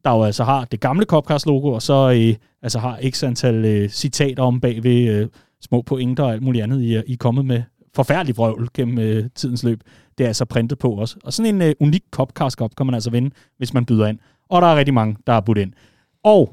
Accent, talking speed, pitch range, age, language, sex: native, 245 wpm, 120-170 Hz, 30-49, Danish, male